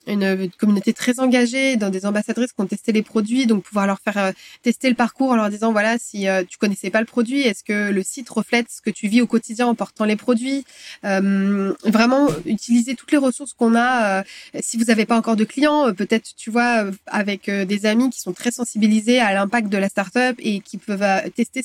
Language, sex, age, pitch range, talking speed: French, female, 20-39, 200-245 Hz, 215 wpm